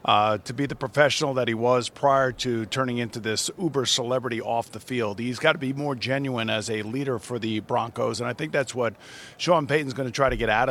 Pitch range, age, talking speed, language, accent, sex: 125-145 Hz, 50-69, 240 wpm, English, American, male